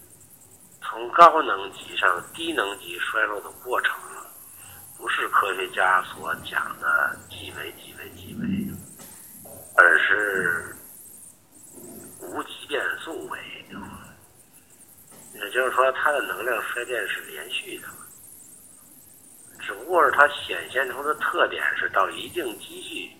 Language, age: Chinese, 50-69